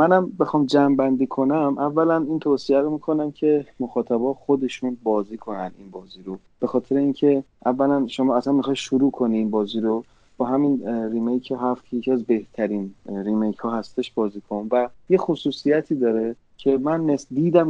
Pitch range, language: 120-145 Hz, Persian